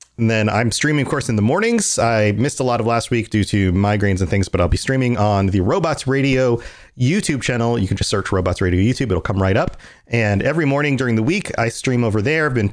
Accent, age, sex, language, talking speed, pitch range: American, 30-49, male, English, 255 wpm, 105-140 Hz